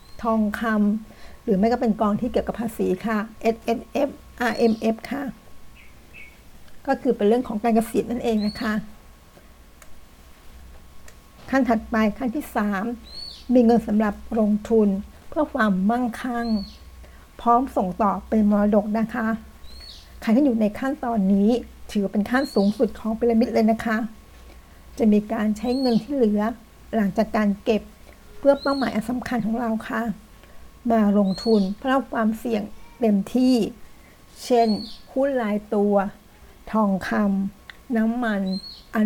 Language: Thai